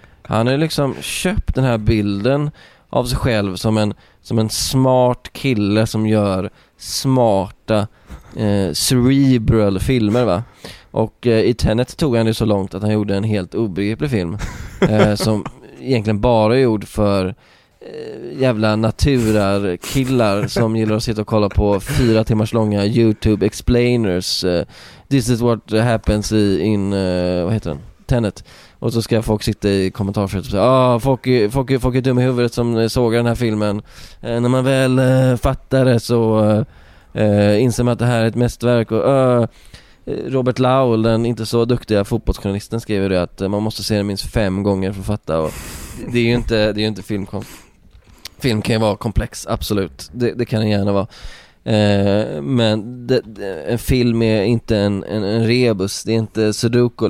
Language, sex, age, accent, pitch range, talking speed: Swedish, male, 20-39, native, 100-120 Hz, 185 wpm